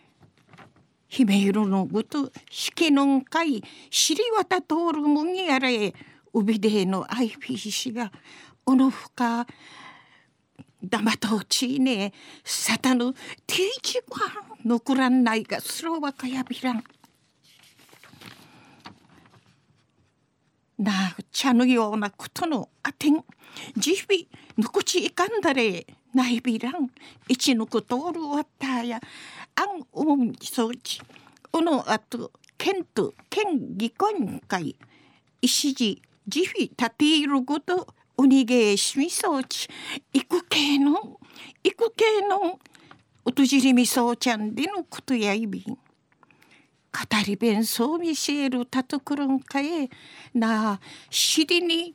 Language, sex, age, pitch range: Japanese, female, 50-69, 230-310 Hz